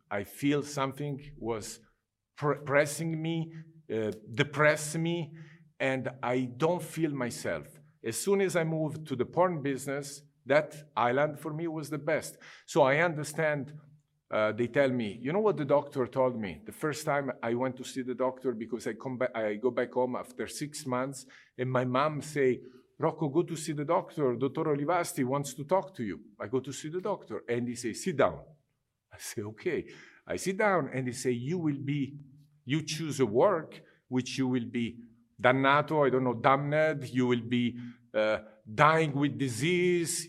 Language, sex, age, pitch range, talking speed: Turkish, male, 50-69, 125-155 Hz, 185 wpm